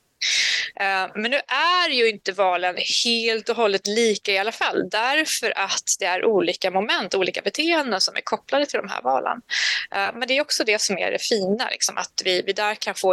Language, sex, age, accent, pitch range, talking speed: English, female, 20-39, Swedish, 180-245 Hz, 195 wpm